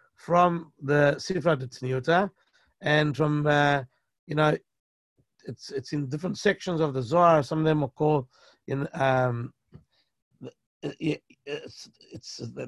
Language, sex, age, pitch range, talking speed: English, male, 60-79, 140-175 Hz, 125 wpm